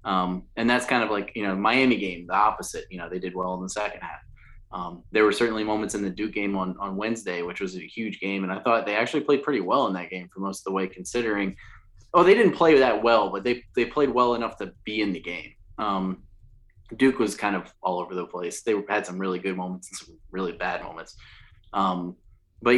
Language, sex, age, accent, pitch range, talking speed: English, male, 20-39, American, 95-125 Hz, 250 wpm